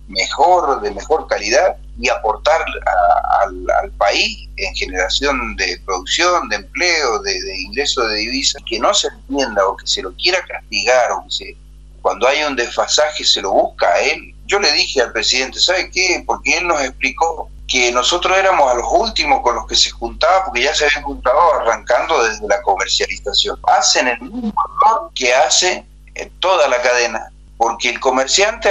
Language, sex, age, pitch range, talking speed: Spanish, male, 40-59, 125-200 Hz, 185 wpm